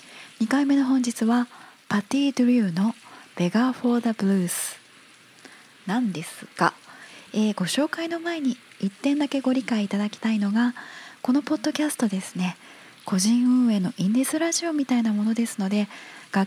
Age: 20-39